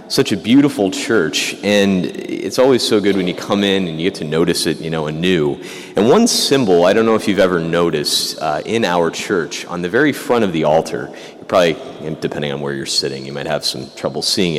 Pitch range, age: 85-120 Hz, 30-49